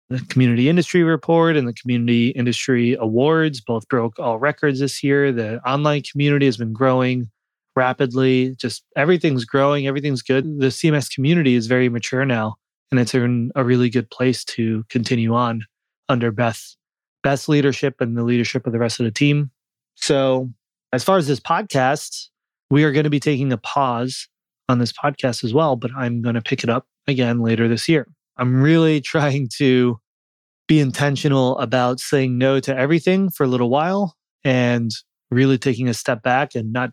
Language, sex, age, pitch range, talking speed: English, male, 20-39, 120-140 Hz, 175 wpm